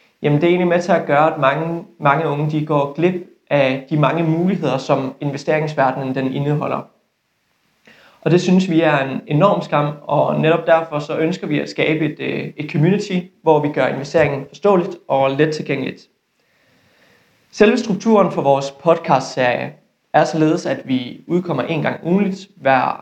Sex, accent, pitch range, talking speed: male, native, 145-170 Hz, 165 wpm